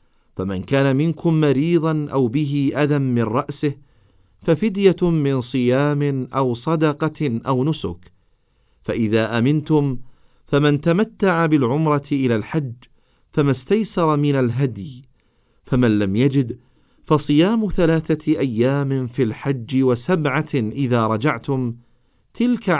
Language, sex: Arabic, male